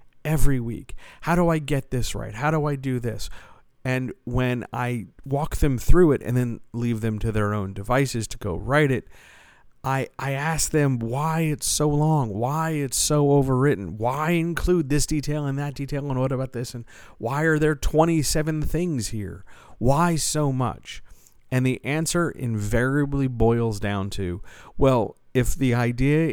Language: English